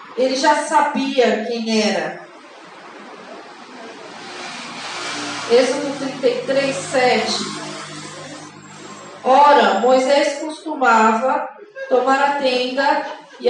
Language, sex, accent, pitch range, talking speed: Portuguese, female, Brazilian, 235-285 Hz, 65 wpm